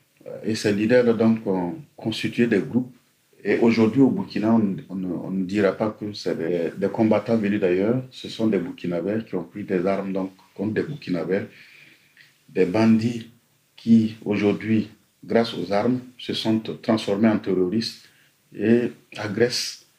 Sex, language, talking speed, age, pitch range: male, English, 155 wpm, 50-69, 100-120 Hz